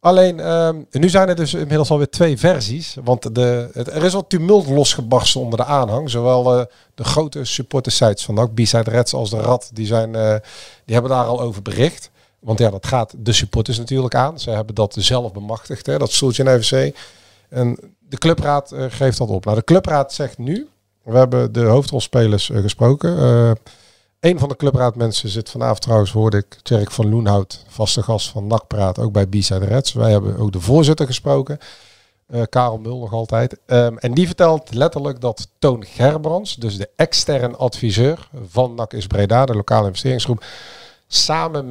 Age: 50-69